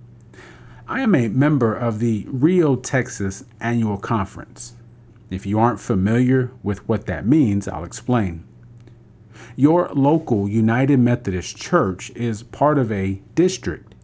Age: 40-59